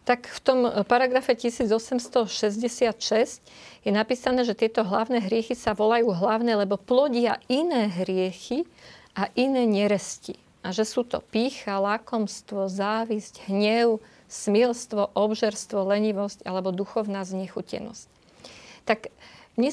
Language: Slovak